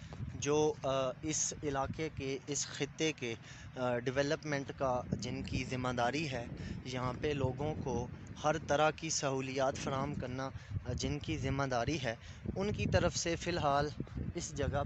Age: 20-39